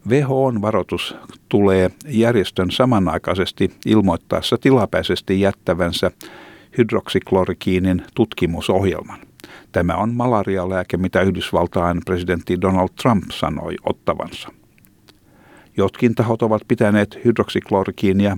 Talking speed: 85 wpm